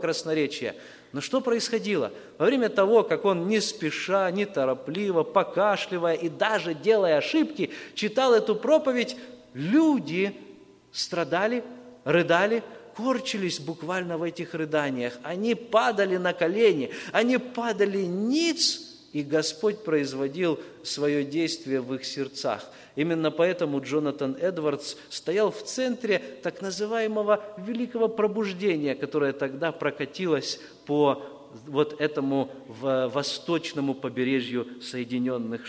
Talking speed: 110 wpm